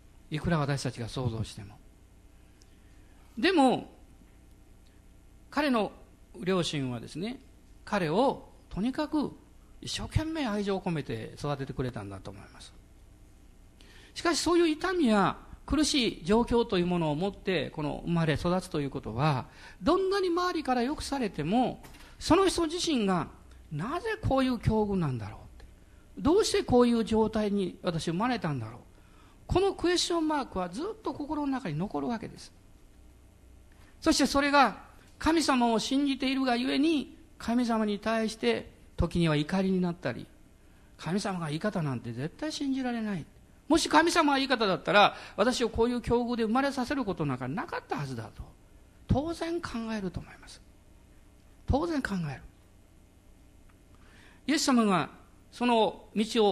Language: Japanese